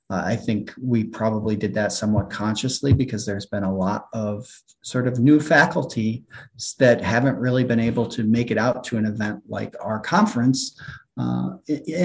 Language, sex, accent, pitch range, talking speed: English, male, American, 100-130 Hz, 175 wpm